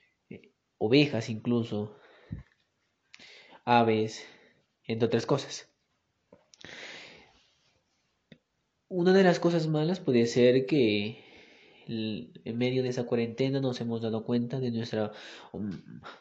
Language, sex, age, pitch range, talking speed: Croatian, male, 20-39, 120-150 Hz, 100 wpm